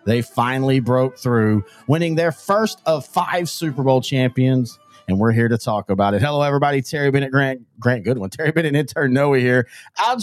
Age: 40-59